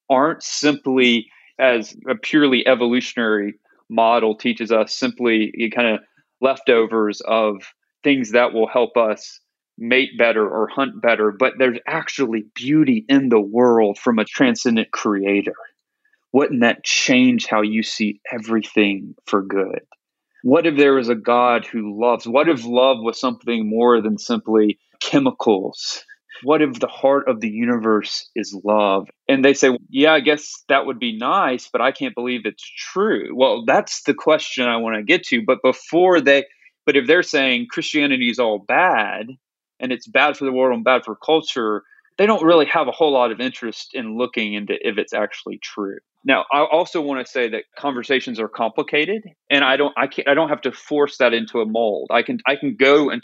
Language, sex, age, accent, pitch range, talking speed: English, male, 30-49, American, 110-140 Hz, 185 wpm